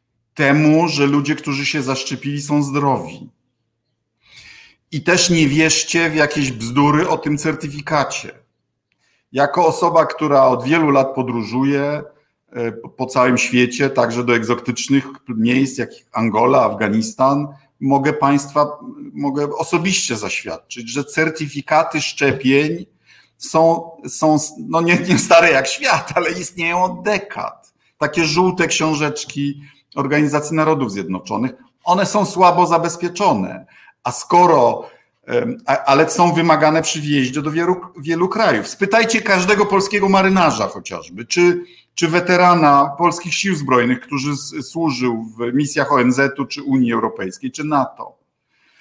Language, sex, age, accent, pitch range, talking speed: Polish, male, 50-69, native, 130-170 Hz, 120 wpm